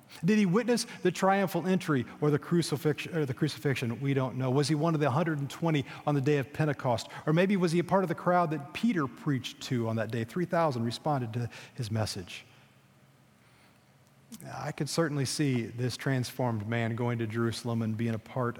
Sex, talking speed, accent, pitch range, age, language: male, 190 wpm, American, 125-165 Hz, 40-59, English